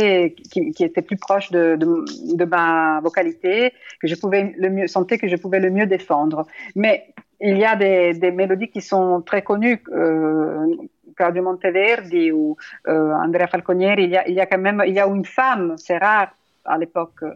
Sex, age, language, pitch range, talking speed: female, 40-59, French, 180-235 Hz, 185 wpm